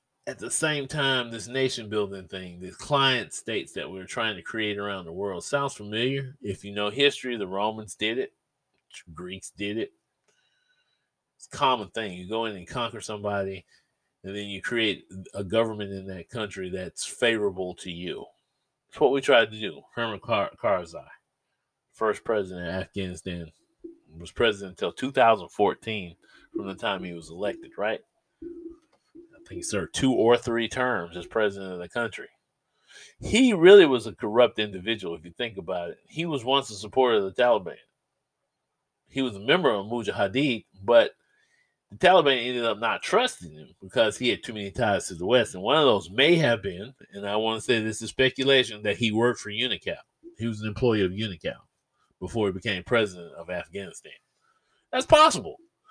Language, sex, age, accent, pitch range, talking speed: English, male, 30-49, American, 100-135 Hz, 180 wpm